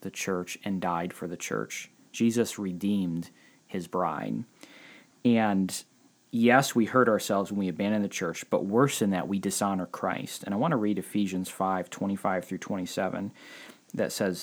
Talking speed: 165 wpm